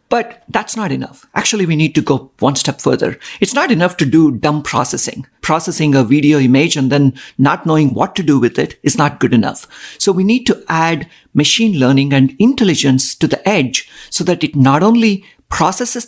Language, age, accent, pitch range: Chinese, 50-69, Indian, 140-190 Hz